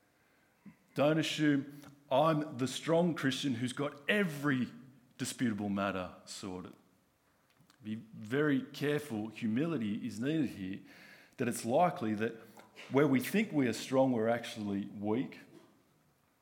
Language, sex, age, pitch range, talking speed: English, male, 50-69, 110-145 Hz, 115 wpm